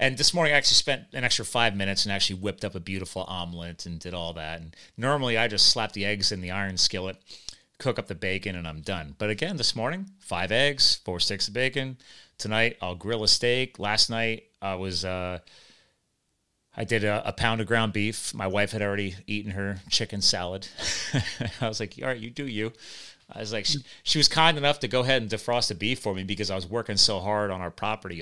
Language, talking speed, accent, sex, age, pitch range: English, 230 wpm, American, male, 30-49, 95-115 Hz